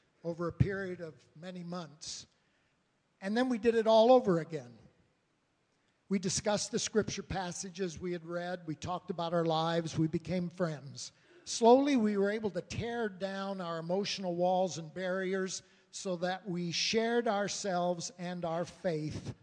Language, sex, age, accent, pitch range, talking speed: English, male, 60-79, American, 165-205 Hz, 155 wpm